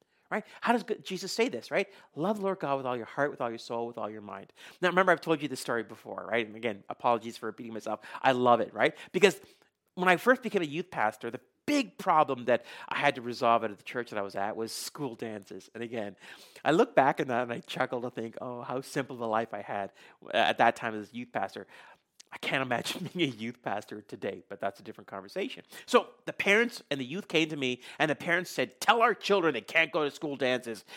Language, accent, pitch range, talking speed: English, American, 115-175 Hz, 250 wpm